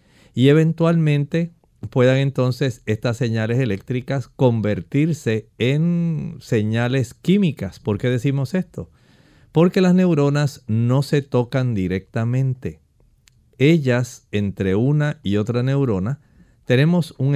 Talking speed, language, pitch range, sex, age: 105 wpm, Spanish, 115-145 Hz, male, 40-59